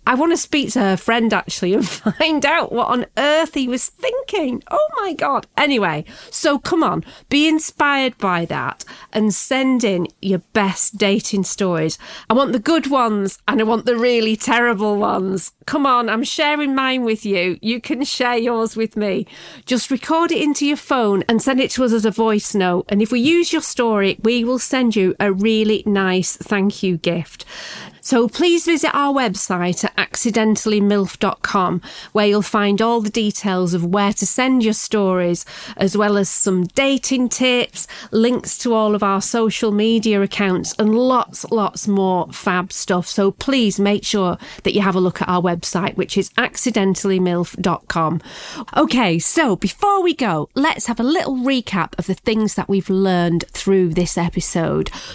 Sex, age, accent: female, 40-59, British